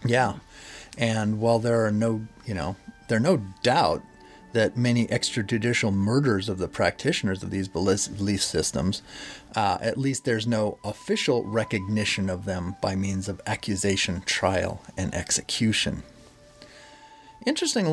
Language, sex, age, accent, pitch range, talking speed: English, male, 30-49, American, 100-130 Hz, 135 wpm